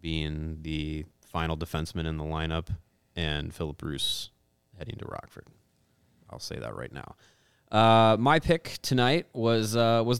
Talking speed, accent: 145 wpm, American